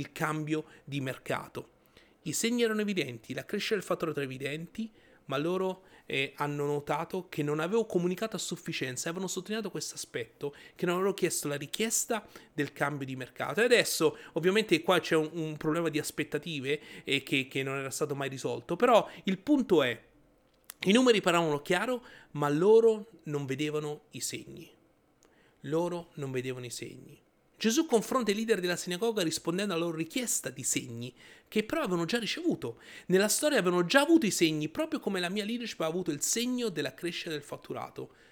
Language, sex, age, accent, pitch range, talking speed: Italian, male, 30-49, native, 145-205 Hz, 180 wpm